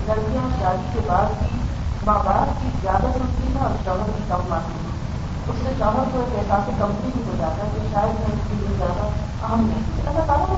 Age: 30-49